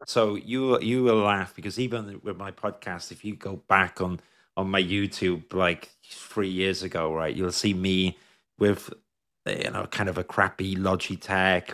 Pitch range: 95-115 Hz